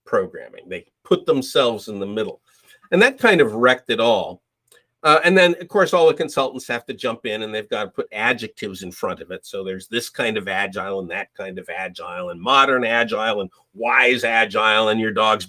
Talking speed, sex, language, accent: 215 wpm, male, English, American